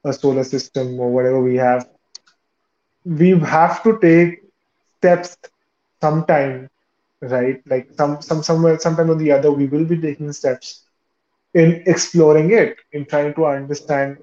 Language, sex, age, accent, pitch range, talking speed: Hindi, male, 20-39, native, 135-160 Hz, 145 wpm